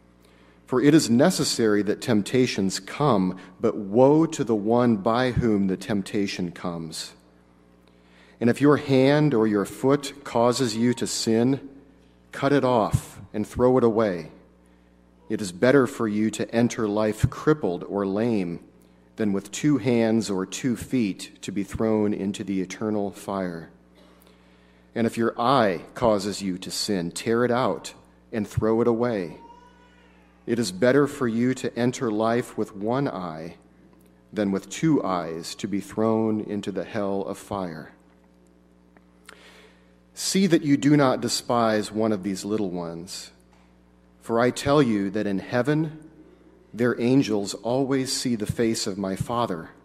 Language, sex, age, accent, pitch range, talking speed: English, male, 40-59, American, 80-120 Hz, 150 wpm